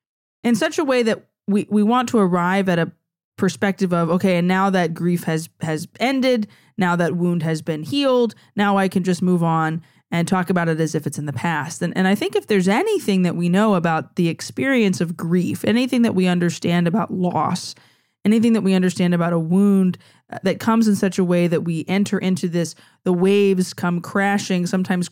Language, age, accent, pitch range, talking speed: English, 20-39, American, 175-215 Hz, 210 wpm